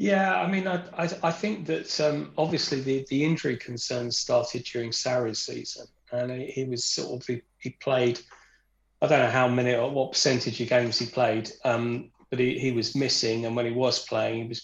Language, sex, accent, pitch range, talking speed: English, male, British, 115-140 Hz, 210 wpm